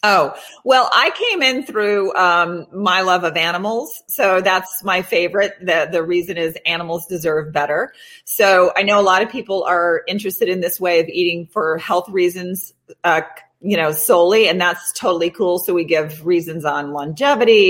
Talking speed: 180 wpm